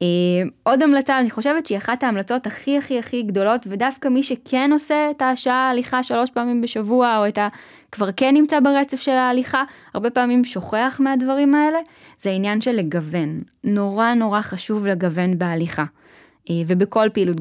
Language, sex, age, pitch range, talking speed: Hebrew, female, 10-29, 195-260 Hz, 165 wpm